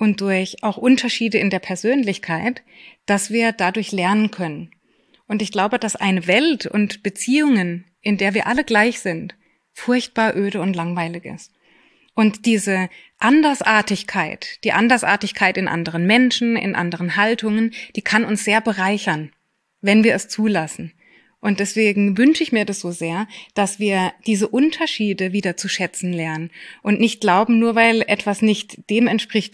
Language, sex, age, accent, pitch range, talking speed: German, female, 20-39, German, 185-230 Hz, 155 wpm